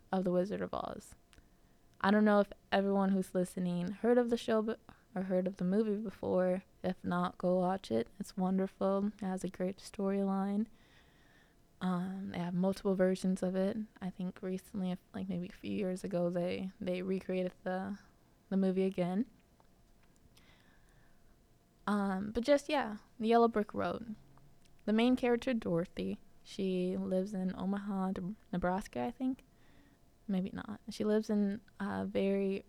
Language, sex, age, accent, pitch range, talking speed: English, female, 20-39, American, 180-210 Hz, 150 wpm